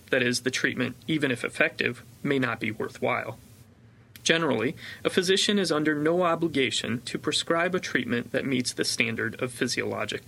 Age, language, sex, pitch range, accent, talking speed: 30-49, English, male, 120-165 Hz, American, 165 wpm